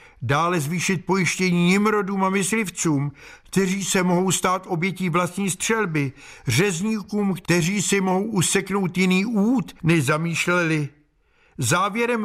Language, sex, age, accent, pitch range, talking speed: Czech, male, 50-69, native, 160-195 Hz, 115 wpm